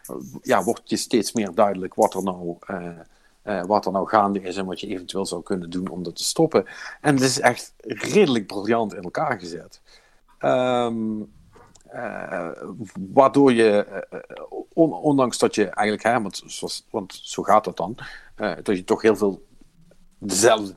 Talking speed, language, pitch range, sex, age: 175 wpm, Dutch, 95-120 Hz, male, 50-69